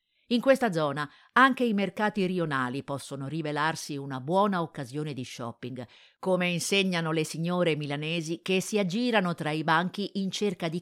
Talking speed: 155 wpm